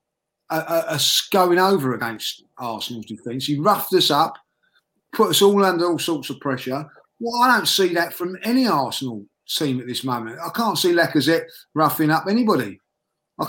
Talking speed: 180 wpm